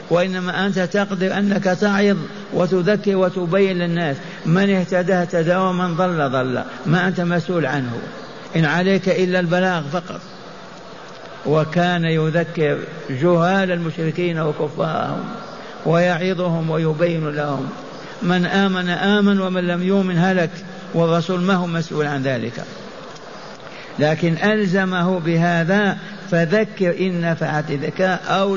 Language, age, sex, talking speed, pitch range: Arabic, 60-79, male, 105 wpm, 155-180 Hz